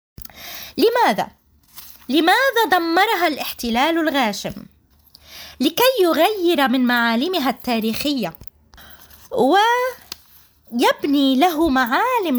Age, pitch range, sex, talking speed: 20-39, 220-350 Hz, female, 65 wpm